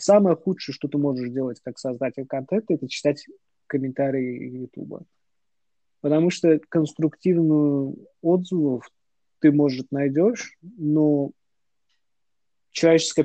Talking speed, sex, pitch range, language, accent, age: 100 wpm, male, 135-160 Hz, Russian, native, 20-39